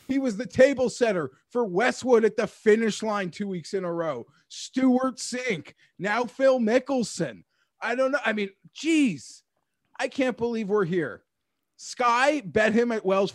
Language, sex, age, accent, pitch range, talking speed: English, male, 30-49, American, 165-225 Hz, 165 wpm